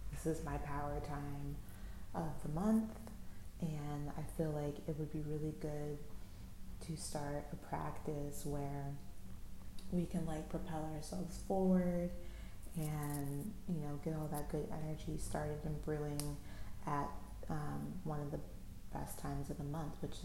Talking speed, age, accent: 150 wpm, 30-49, American